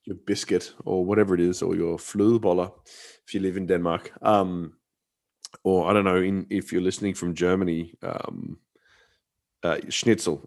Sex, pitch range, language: male, 100-135 Hz, English